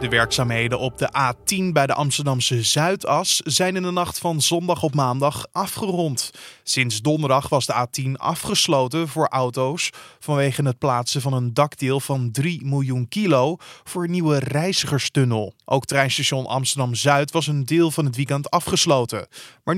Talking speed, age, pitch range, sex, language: 155 wpm, 20-39, 130-160 Hz, male, Dutch